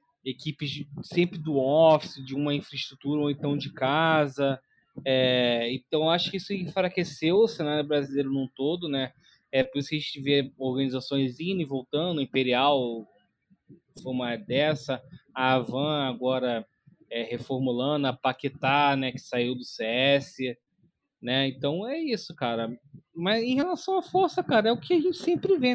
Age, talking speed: 20-39, 155 wpm